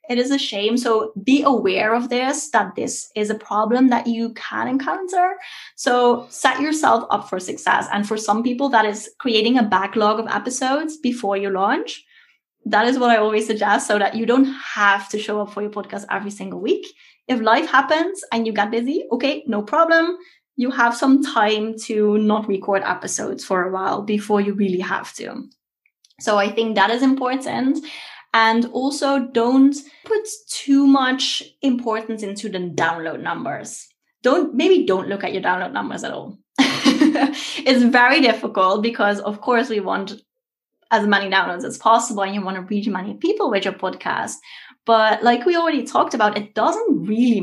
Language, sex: English, female